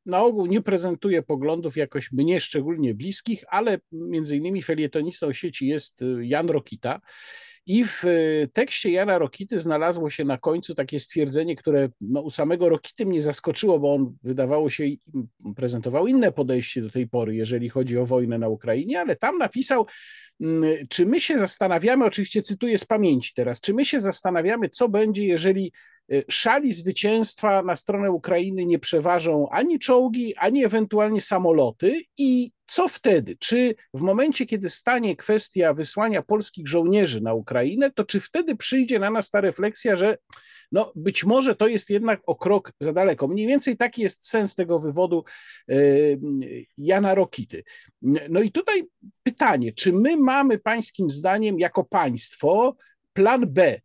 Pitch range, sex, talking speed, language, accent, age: 155-225 Hz, male, 155 wpm, Polish, native, 50-69